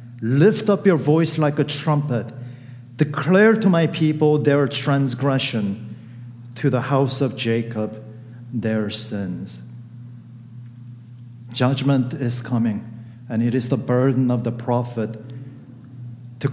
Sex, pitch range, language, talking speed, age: male, 120-140 Hz, English, 115 wpm, 50-69